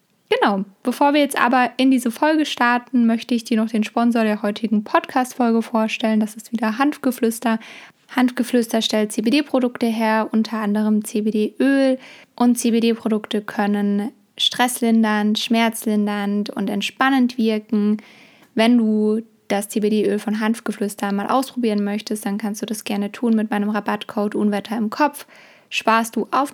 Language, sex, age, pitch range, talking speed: German, female, 20-39, 215-240 Hz, 140 wpm